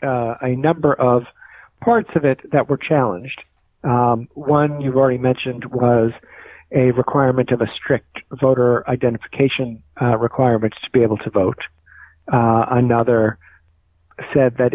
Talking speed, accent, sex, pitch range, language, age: 140 wpm, American, male, 120-140 Hz, English, 50-69